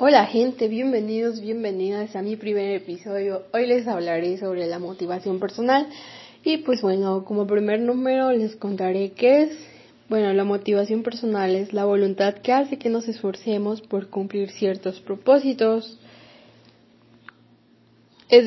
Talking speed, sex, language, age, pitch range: 135 wpm, female, Spanish, 20-39, 195-225 Hz